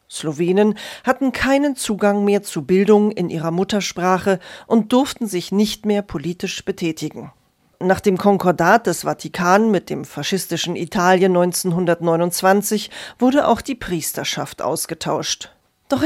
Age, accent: 40-59, German